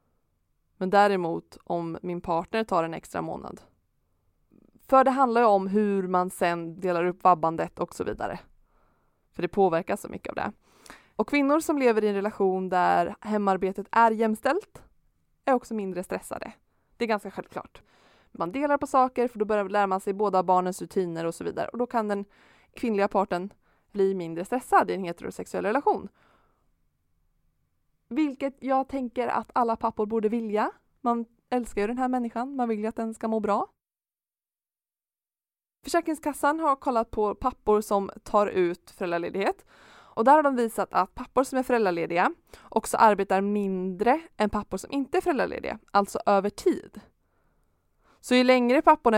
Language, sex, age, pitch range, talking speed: Swedish, female, 20-39, 185-245 Hz, 165 wpm